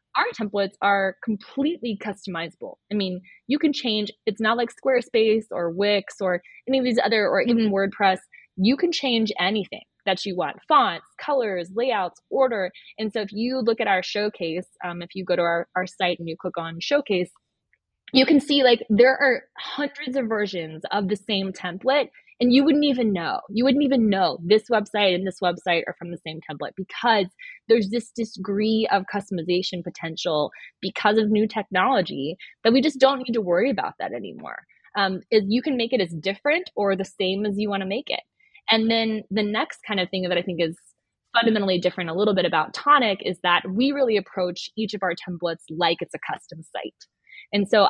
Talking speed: 200 wpm